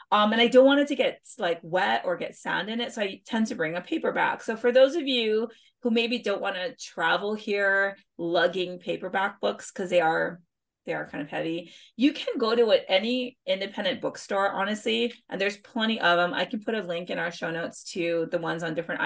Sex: female